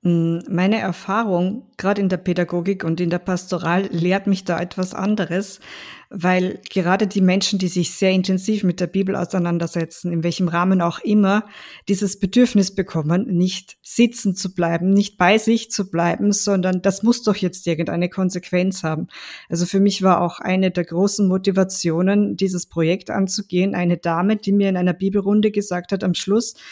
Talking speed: 170 wpm